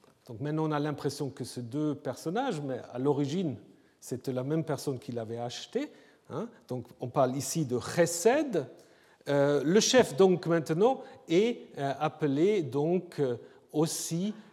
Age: 40-59